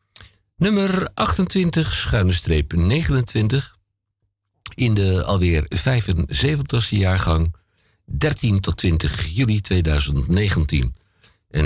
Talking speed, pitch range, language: 75 wpm, 90-110 Hz, Dutch